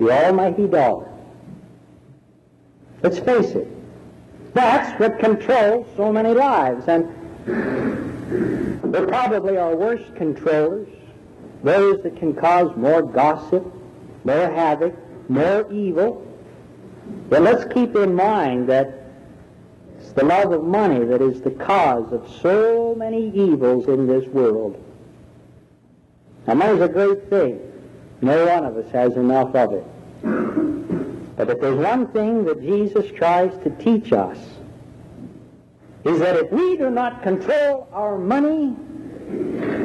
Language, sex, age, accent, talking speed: English, male, 60-79, American, 125 wpm